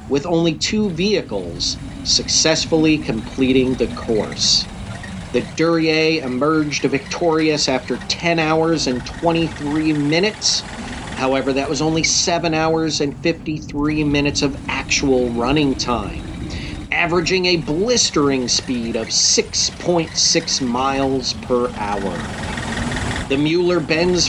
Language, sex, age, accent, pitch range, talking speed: English, male, 40-59, American, 130-165 Hz, 105 wpm